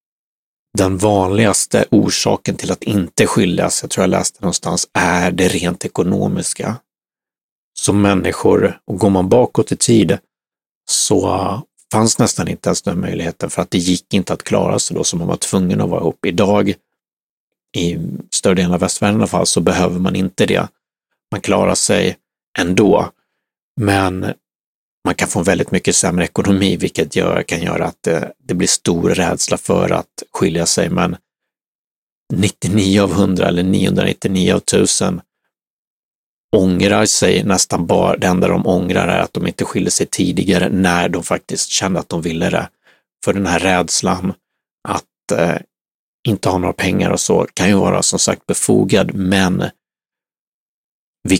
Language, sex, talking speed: Swedish, male, 165 wpm